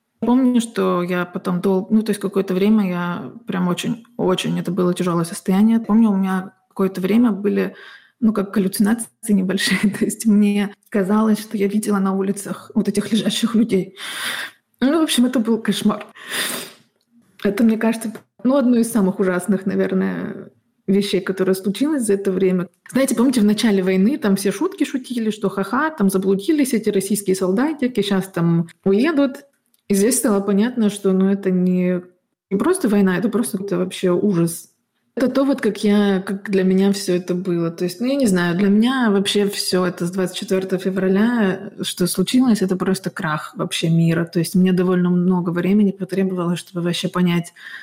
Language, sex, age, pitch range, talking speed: Russian, female, 20-39, 185-220 Hz, 170 wpm